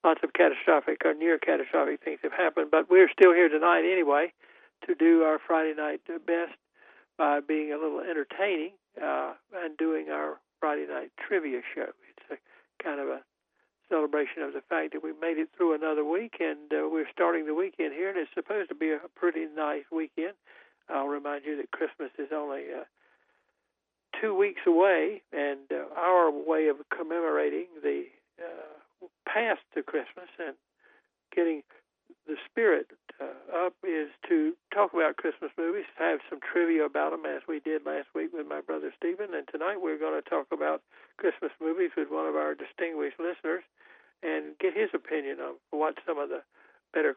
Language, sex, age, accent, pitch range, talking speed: English, male, 60-79, American, 145-195 Hz, 175 wpm